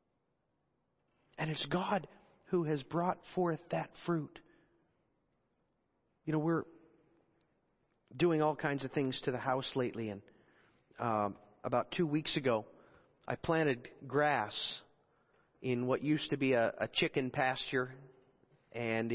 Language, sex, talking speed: English, male, 125 wpm